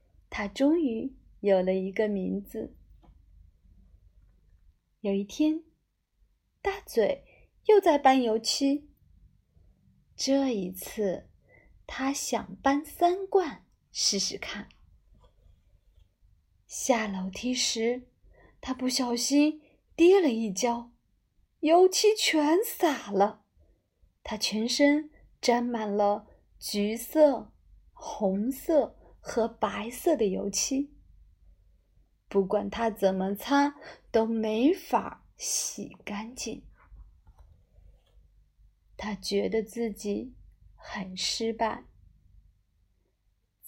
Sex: female